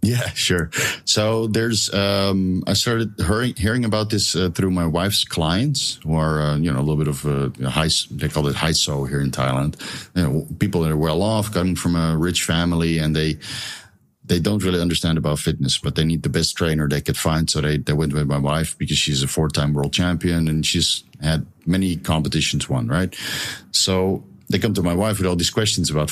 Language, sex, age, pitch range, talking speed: English, male, 50-69, 80-100 Hz, 220 wpm